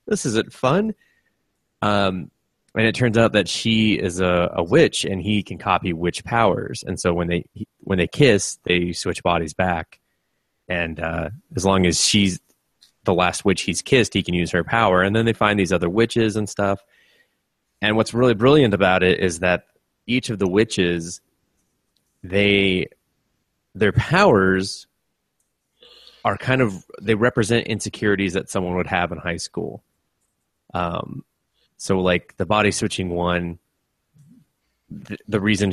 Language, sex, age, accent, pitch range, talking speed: English, male, 30-49, American, 90-105 Hz, 160 wpm